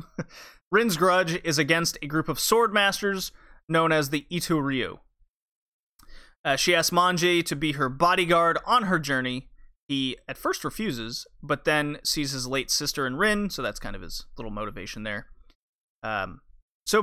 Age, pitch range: 30-49, 130-175 Hz